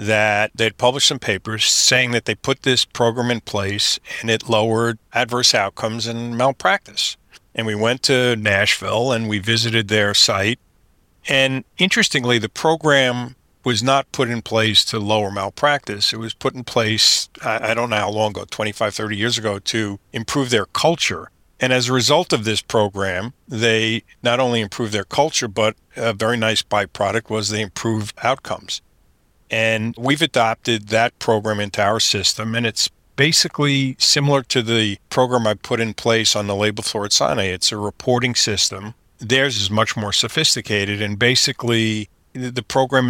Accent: American